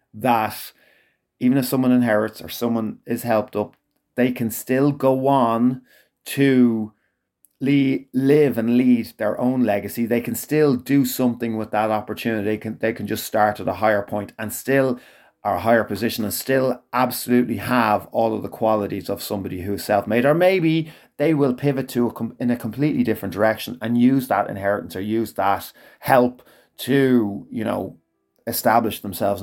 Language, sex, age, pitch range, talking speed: English, male, 30-49, 110-135 Hz, 175 wpm